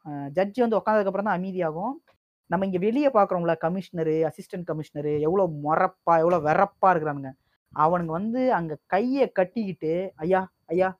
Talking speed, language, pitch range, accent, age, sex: 130 wpm, Tamil, 160-225 Hz, native, 20-39, female